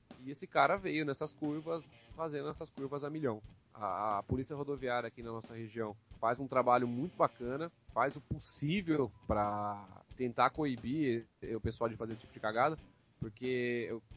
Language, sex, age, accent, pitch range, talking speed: Portuguese, male, 20-39, Brazilian, 110-135 Hz, 170 wpm